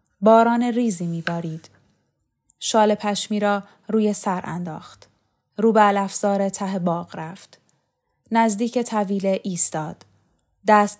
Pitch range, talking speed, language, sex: 175-220 Hz, 105 wpm, Persian, female